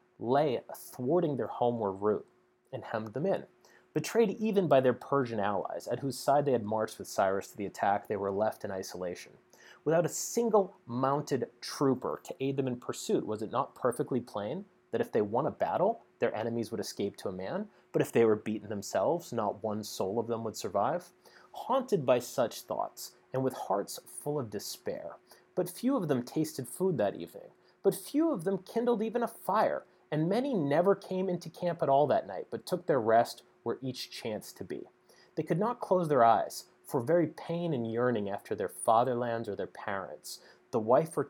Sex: male